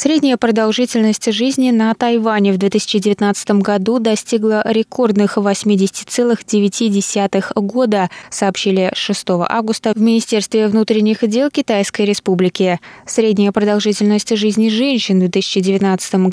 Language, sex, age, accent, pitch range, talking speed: Russian, female, 20-39, native, 195-230 Hz, 100 wpm